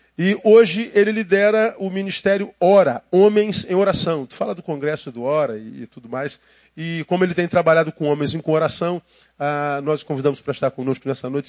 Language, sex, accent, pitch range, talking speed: Portuguese, male, Brazilian, 135-165 Hz, 205 wpm